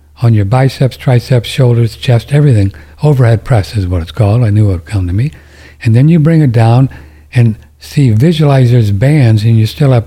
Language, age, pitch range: English, 60-79, 75-125 Hz